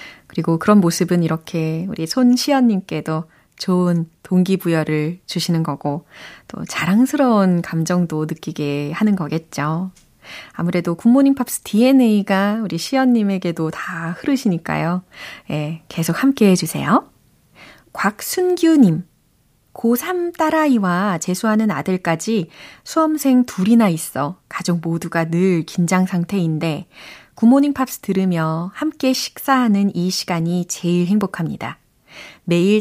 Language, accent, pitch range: Korean, native, 170-235 Hz